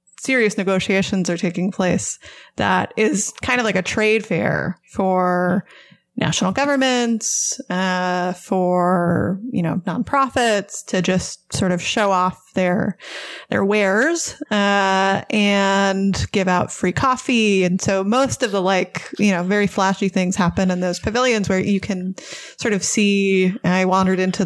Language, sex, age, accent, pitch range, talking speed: English, female, 20-39, American, 185-210 Hz, 145 wpm